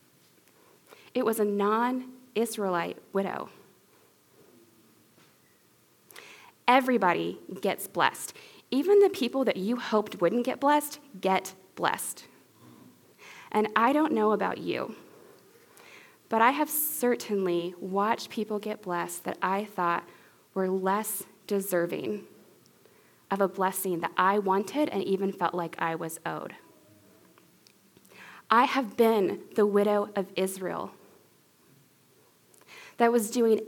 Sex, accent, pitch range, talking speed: female, American, 190-240 Hz, 110 wpm